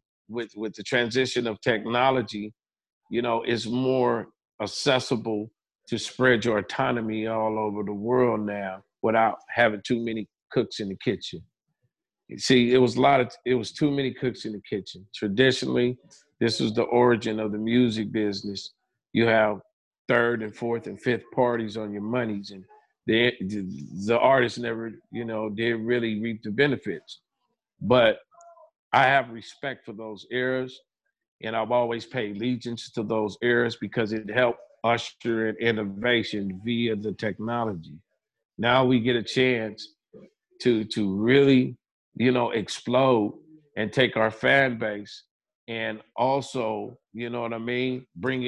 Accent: American